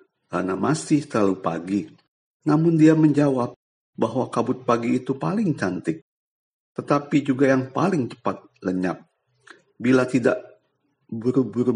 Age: 50-69